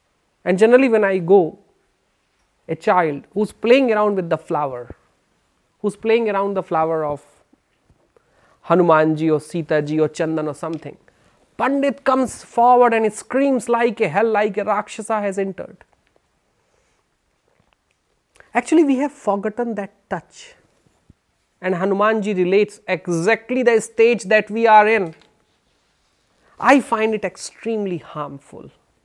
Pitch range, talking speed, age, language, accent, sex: 165-235 Hz, 130 wpm, 30-49, Hindi, native, male